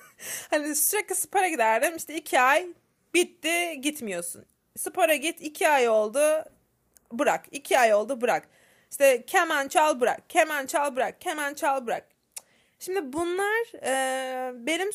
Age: 30-49